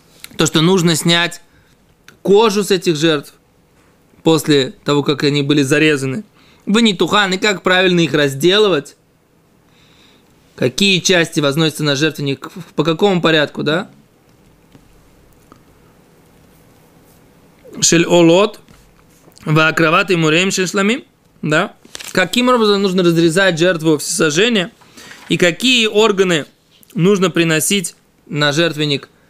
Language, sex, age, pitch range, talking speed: Russian, male, 20-39, 160-215 Hz, 105 wpm